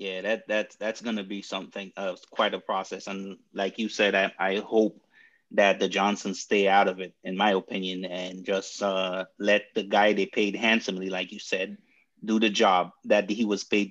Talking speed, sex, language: 205 wpm, male, English